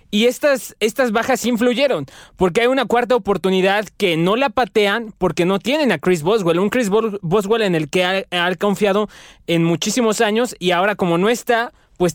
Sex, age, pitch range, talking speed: male, 20-39, 170-215 Hz, 190 wpm